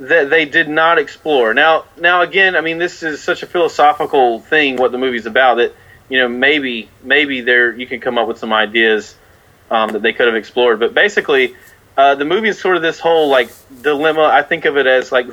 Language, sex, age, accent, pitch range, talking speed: English, male, 30-49, American, 115-155 Hz, 225 wpm